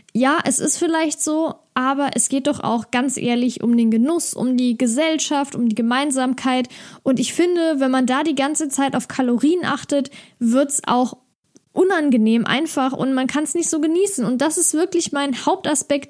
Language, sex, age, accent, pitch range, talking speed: German, female, 10-29, German, 240-290 Hz, 190 wpm